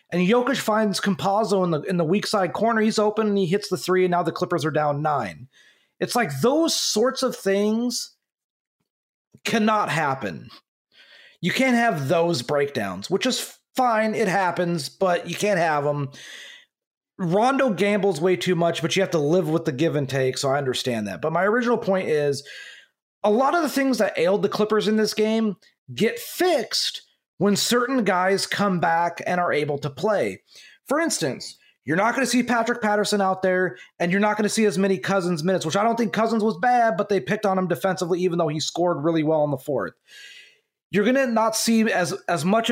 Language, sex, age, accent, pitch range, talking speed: English, male, 30-49, American, 175-220 Hz, 205 wpm